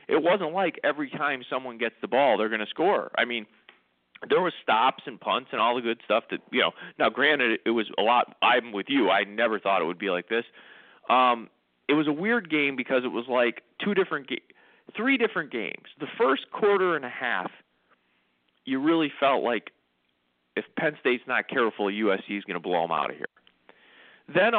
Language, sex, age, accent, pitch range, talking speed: English, male, 40-59, American, 110-175 Hz, 210 wpm